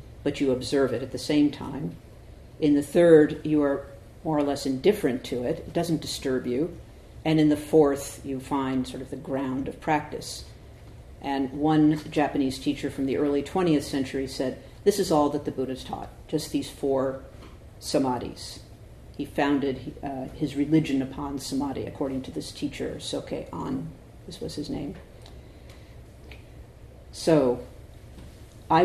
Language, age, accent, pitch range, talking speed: English, 50-69, American, 135-150 Hz, 155 wpm